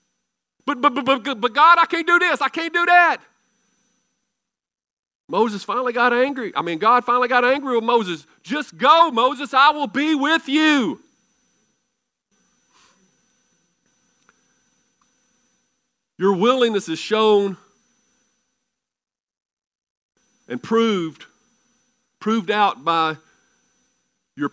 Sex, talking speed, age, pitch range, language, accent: male, 105 wpm, 50-69, 210-255 Hz, English, American